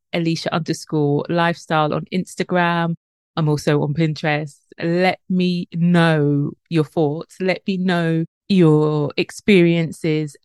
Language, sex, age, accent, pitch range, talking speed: English, female, 30-49, British, 155-180 Hz, 110 wpm